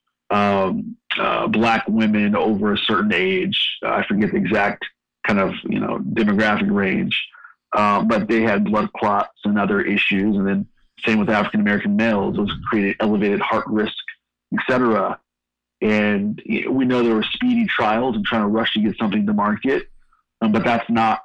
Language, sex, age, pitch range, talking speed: English, male, 40-59, 100-110 Hz, 175 wpm